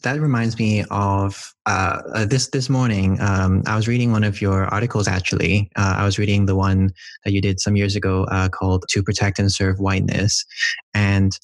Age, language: 20-39, English